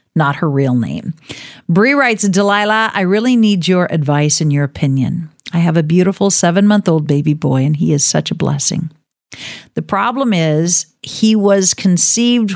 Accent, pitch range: American, 150-195 Hz